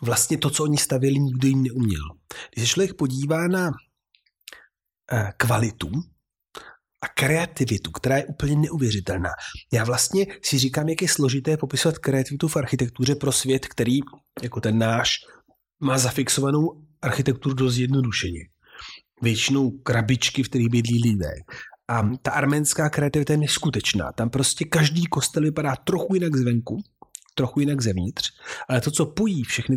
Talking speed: 140 wpm